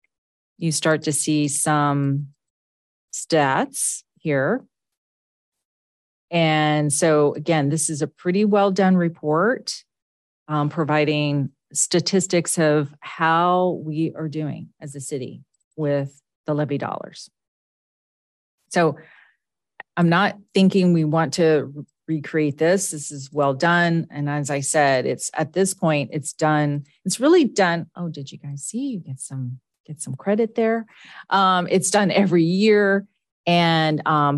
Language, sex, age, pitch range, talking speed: English, female, 40-59, 150-180 Hz, 135 wpm